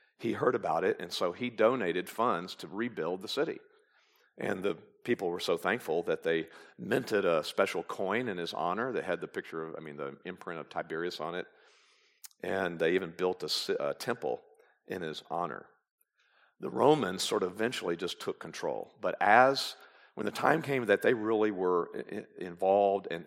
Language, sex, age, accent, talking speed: English, male, 50-69, American, 185 wpm